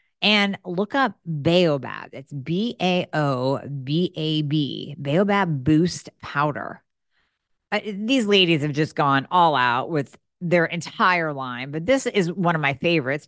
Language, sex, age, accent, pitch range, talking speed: English, female, 40-59, American, 145-180 Hz, 125 wpm